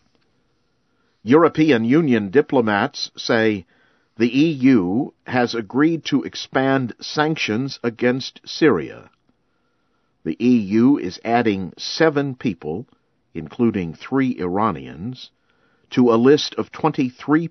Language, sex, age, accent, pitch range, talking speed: English, male, 50-69, American, 105-130 Hz, 95 wpm